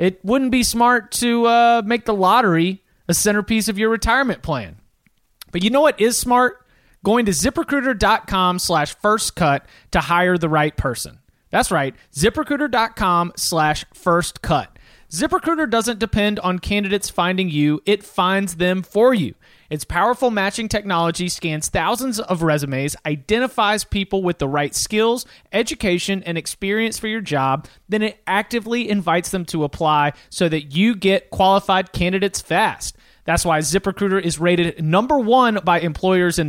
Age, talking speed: 30-49, 155 wpm